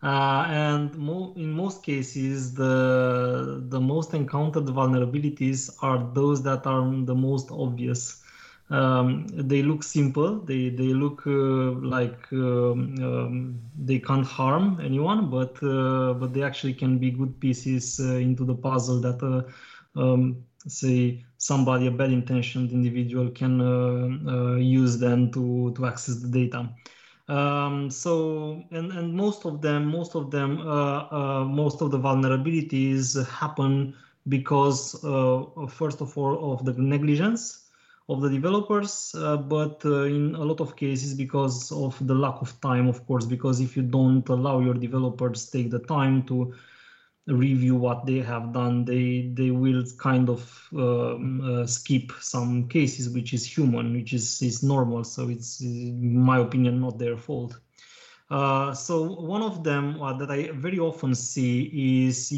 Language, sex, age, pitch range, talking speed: English, male, 20-39, 125-145 Hz, 155 wpm